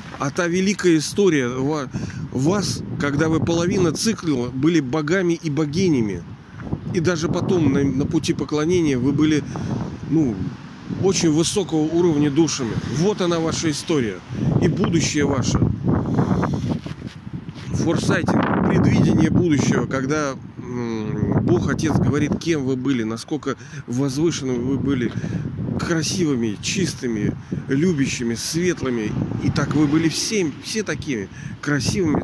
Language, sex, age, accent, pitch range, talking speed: Russian, male, 40-59, native, 125-165 Hz, 115 wpm